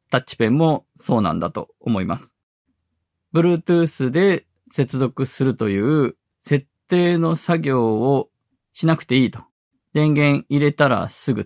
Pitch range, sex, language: 120-170 Hz, male, Japanese